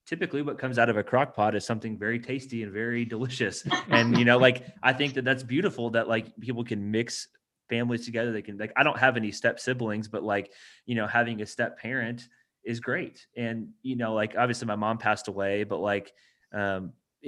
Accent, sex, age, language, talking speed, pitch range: American, male, 20-39, English, 215 wpm, 110-125 Hz